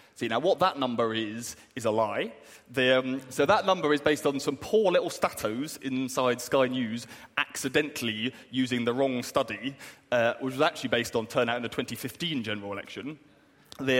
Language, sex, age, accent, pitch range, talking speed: English, male, 30-49, British, 115-140 Hz, 170 wpm